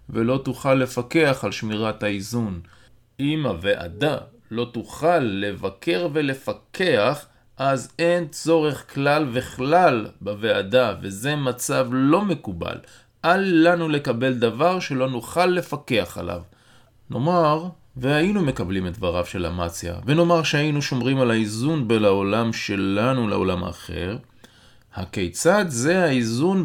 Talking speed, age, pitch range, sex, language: 110 wpm, 20-39, 105-145 Hz, male, Hebrew